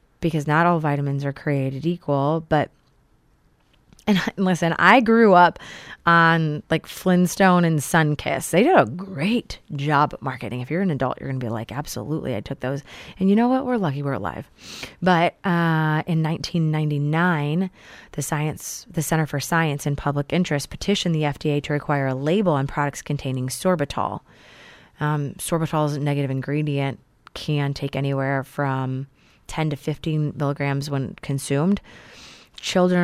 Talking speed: 160 wpm